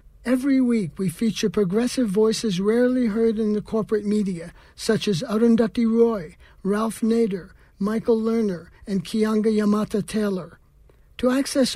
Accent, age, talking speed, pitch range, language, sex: American, 60-79, 130 wpm, 190-230 Hz, English, male